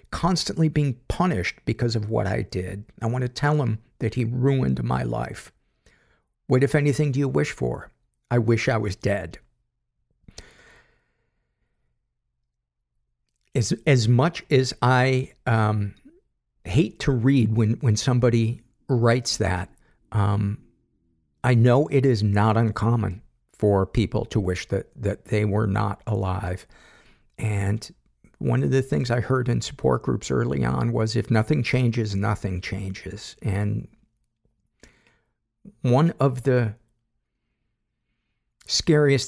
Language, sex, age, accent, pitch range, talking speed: English, male, 50-69, American, 105-130 Hz, 130 wpm